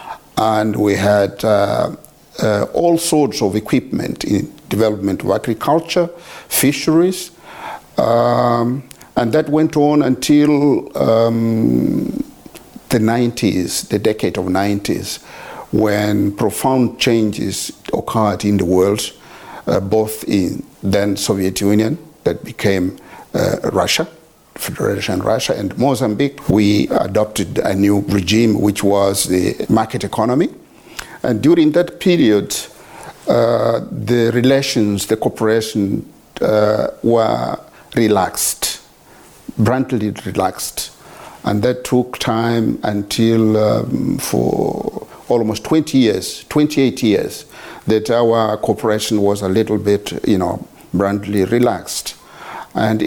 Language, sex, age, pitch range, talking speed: English, male, 50-69, 100-125 Hz, 110 wpm